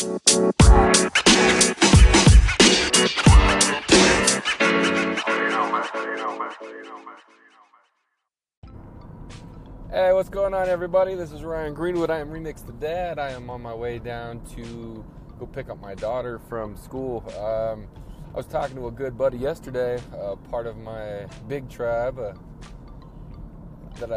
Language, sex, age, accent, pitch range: English, male, 20-39, American, 100-125 Hz